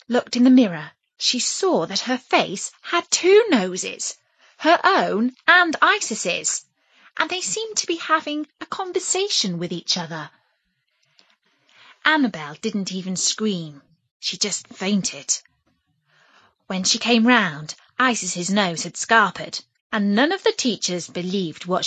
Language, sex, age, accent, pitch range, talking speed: English, female, 20-39, British, 185-275 Hz, 135 wpm